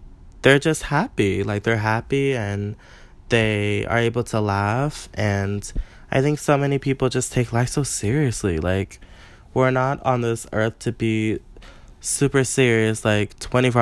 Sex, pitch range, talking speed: male, 100-115 Hz, 150 wpm